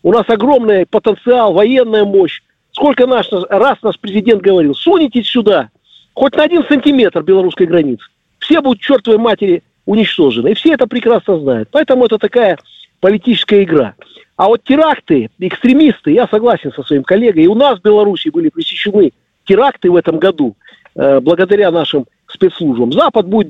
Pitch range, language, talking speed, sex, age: 190-255 Hz, Russian, 150 wpm, male, 50-69